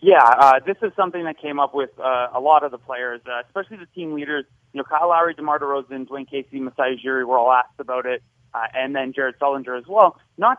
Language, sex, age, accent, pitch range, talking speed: English, male, 30-49, American, 135-160 Hz, 245 wpm